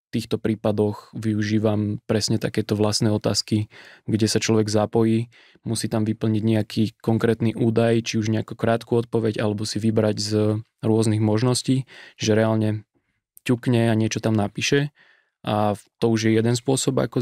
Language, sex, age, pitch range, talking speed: Slovak, male, 20-39, 110-120 Hz, 150 wpm